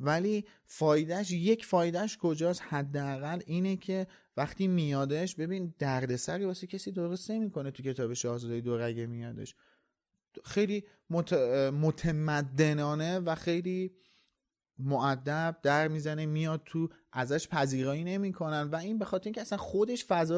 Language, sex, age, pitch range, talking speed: Persian, male, 30-49, 140-185 Hz, 120 wpm